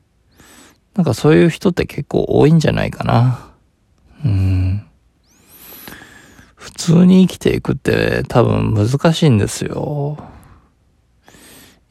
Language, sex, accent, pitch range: Japanese, male, native, 100-150 Hz